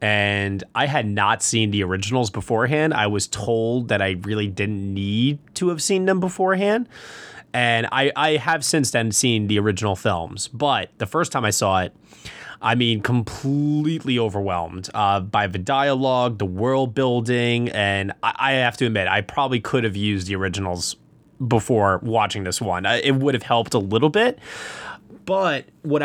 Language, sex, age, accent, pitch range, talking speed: English, male, 20-39, American, 105-145 Hz, 175 wpm